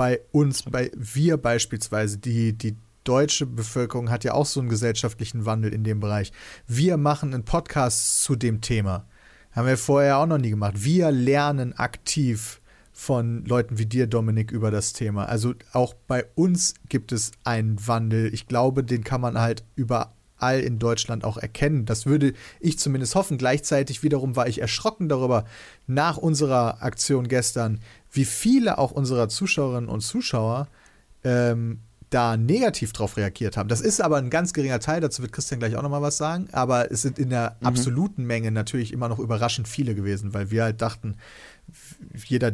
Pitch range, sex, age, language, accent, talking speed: 115-135 Hz, male, 40-59, German, German, 175 wpm